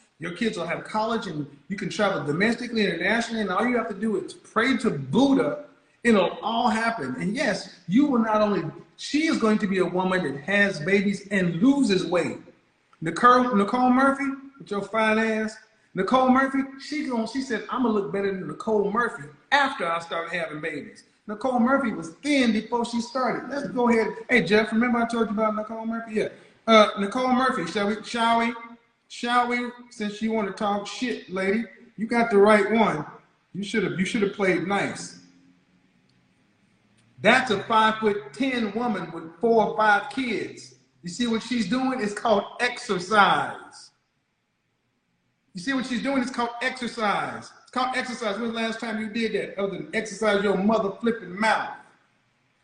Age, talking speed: 30-49, 180 wpm